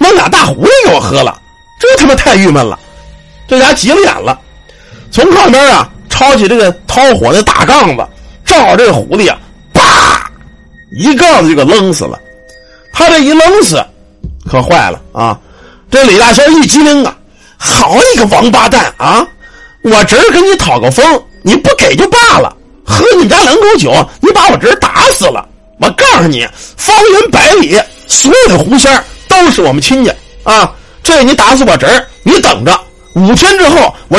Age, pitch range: 50-69, 215-325 Hz